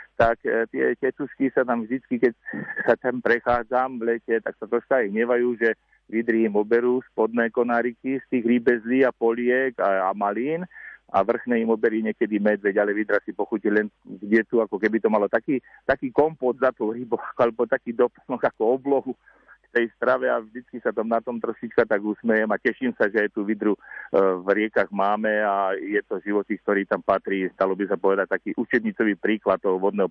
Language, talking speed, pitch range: Slovak, 195 wpm, 105-120 Hz